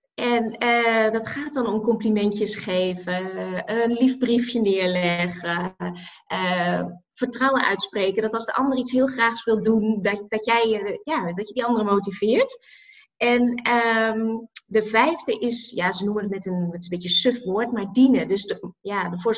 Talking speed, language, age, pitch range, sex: 175 wpm, Dutch, 20-39, 205-255 Hz, female